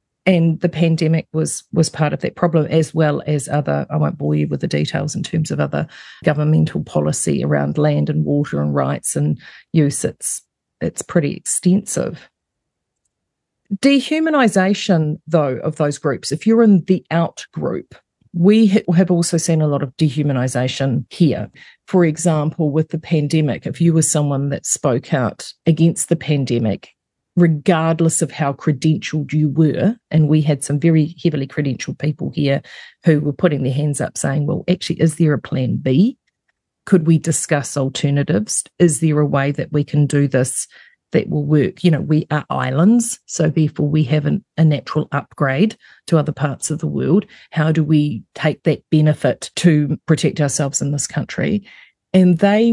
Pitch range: 145-170 Hz